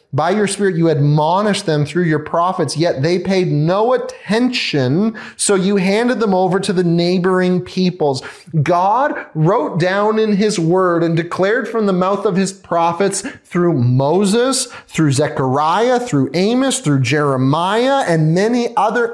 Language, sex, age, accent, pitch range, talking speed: English, male, 30-49, American, 150-220 Hz, 150 wpm